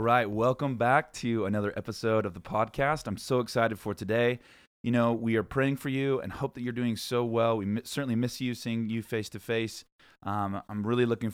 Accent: American